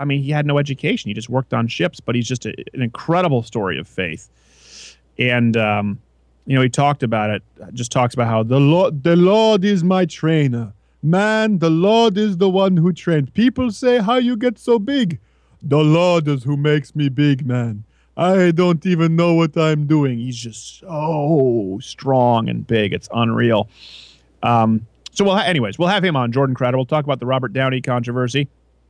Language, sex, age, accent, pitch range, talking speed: English, male, 30-49, American, 115-160 Hz, 195 wpm